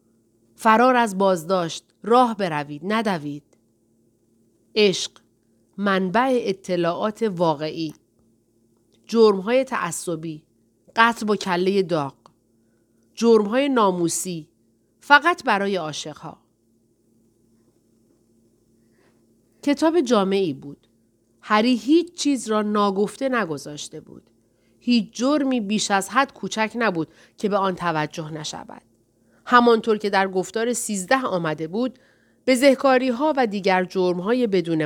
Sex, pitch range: female, 140-225 Hz